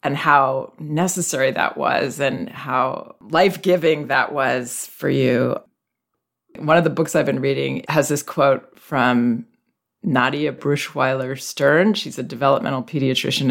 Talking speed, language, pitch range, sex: 130 wpm, English, 135-165 Hz, female